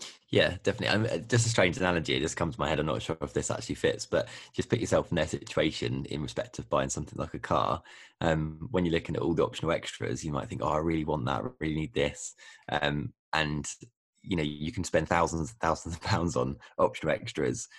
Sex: male